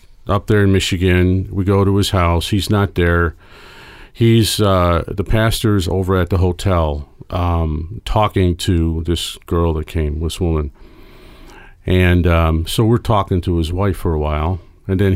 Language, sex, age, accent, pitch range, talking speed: English, male, 50-69, American, 85-100 Hz, 165 wpm